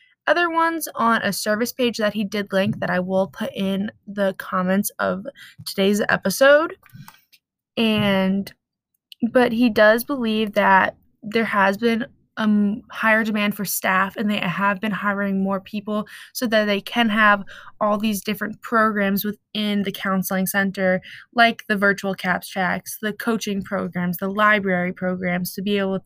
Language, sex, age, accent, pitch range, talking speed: English, female, 20-39, American, 200-230 Hz, 155 wpm